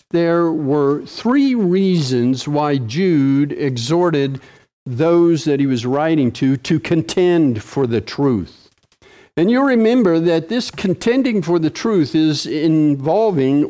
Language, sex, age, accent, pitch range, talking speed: English, male, 50-69, American, 140-195 Hz, 125 wpm